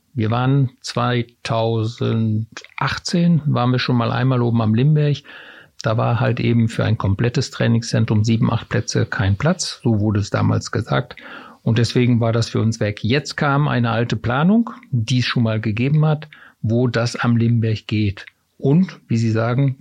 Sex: male